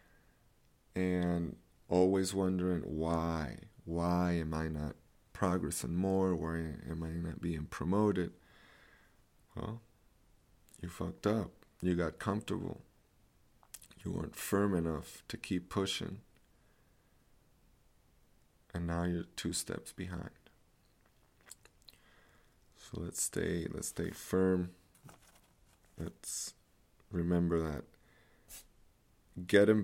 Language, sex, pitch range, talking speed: English, male, 80-90 Hz, 90 wpm